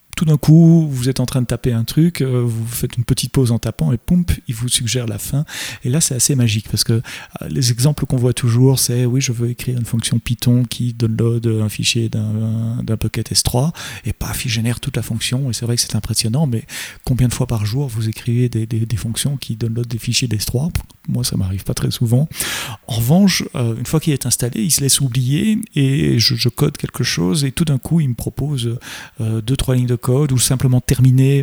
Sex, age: male, 30-49